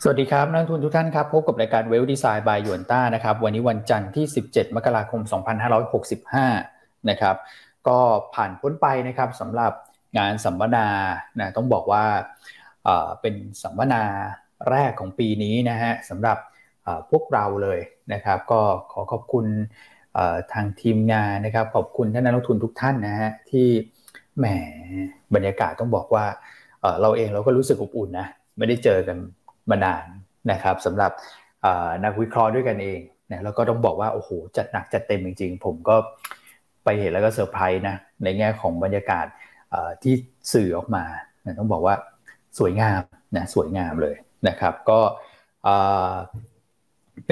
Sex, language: male, Thai